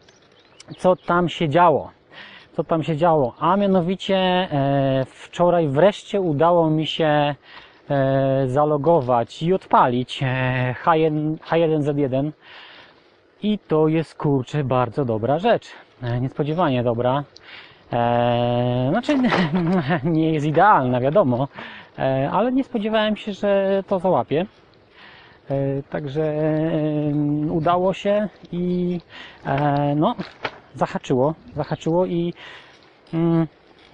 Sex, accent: male, Polish